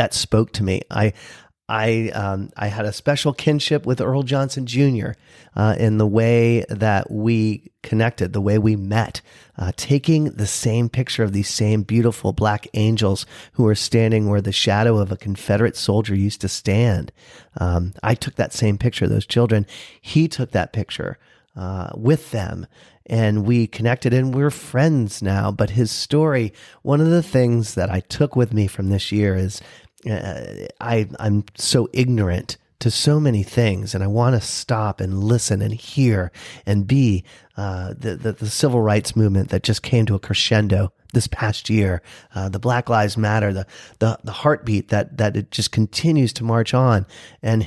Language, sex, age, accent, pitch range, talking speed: English, male, 40-59, American, 100-125 Hz, 180 wpm